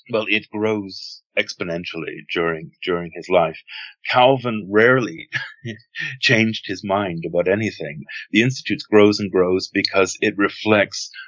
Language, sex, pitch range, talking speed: English, male, 95-115 Hz, 120 wpm